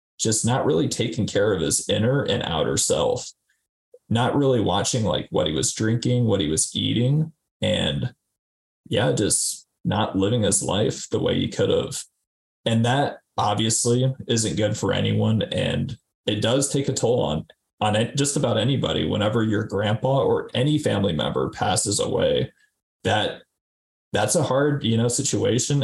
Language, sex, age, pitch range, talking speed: English, male, 20-39, 105-135 Hz, 160 wpm